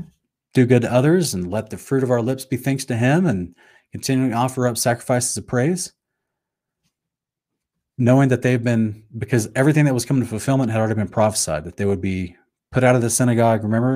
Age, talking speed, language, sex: 30-49, 205 wpm, English, male